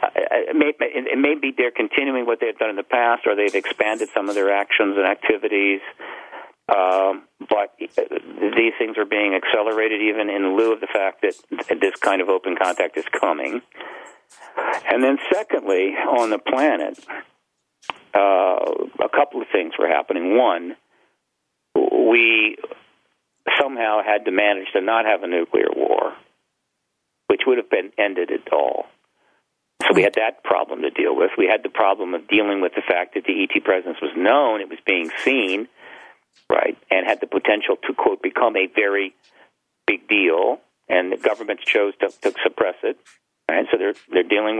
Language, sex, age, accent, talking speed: English, male, 50-69, American, 170 wpm